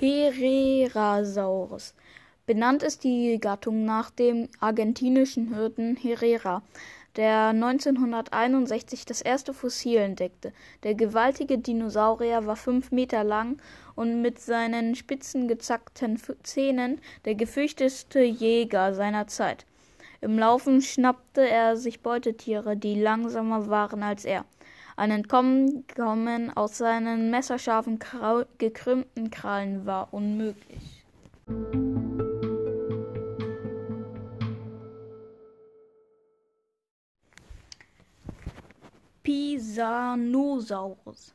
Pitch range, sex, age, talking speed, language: 215-255 Hz, female, 10-29, 80 wpm, German